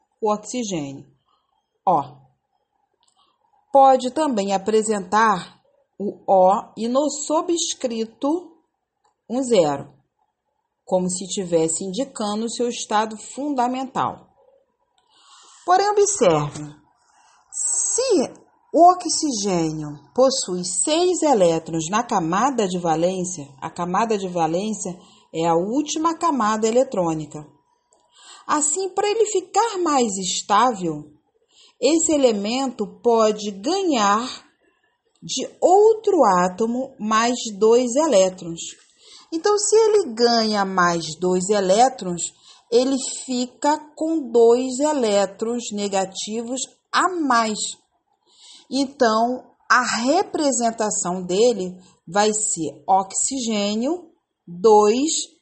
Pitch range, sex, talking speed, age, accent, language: 195-315 Hz, female, 90 wpm, 40-59, Brazilian, Portuguese